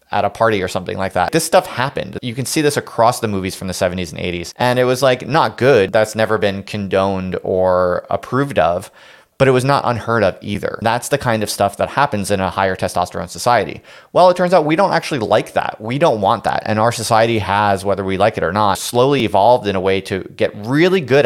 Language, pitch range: English, 95-115 Hz